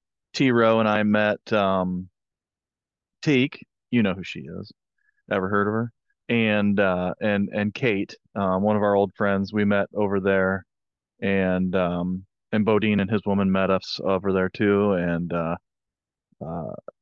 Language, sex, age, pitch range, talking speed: English, male, 20-39, 100-125 Hz, 160 wpm